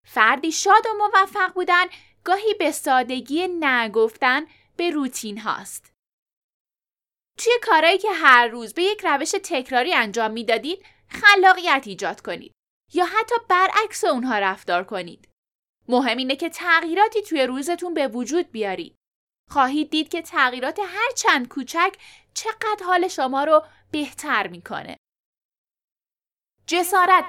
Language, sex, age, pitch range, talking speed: Persian, female, 10-29, 265-365 Hz, 125 wpm